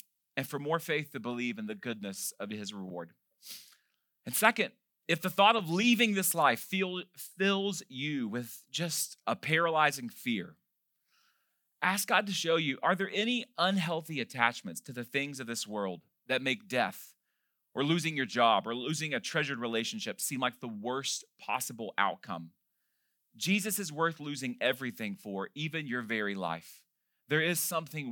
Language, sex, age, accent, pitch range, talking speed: English, male, 30-49, American, 125-195 Hz, 160 wpm